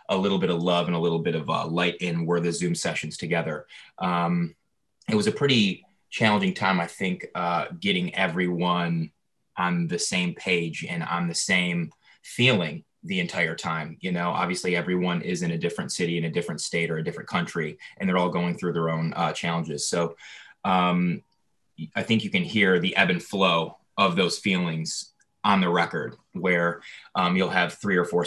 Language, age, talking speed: English, 20-39, 195 wpm